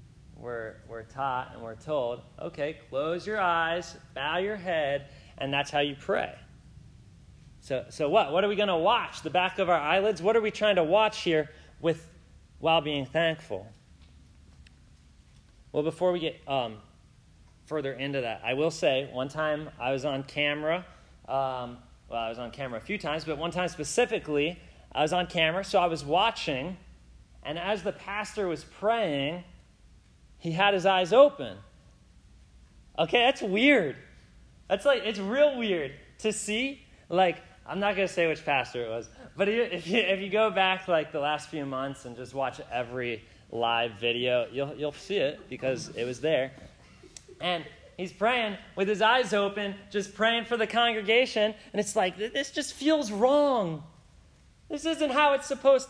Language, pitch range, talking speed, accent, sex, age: English, 135-210 Hz, 170 wpm, American, male, 30-49